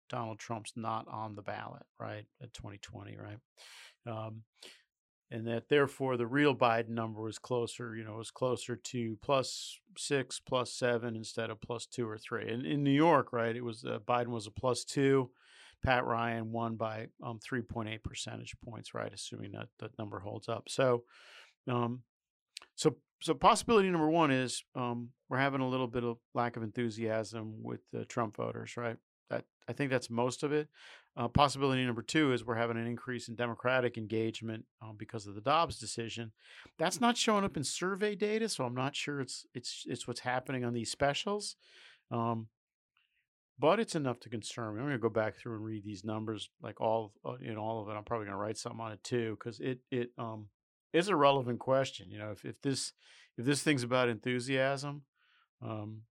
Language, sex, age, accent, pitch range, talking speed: English, male, 40-59, American, 110-130 Hz, 195 wpm